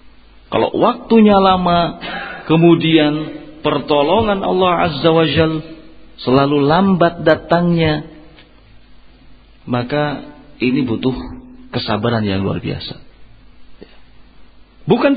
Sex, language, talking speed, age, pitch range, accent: male, Indonesian, 80 wpm, 50-69, 130-175 Hz, native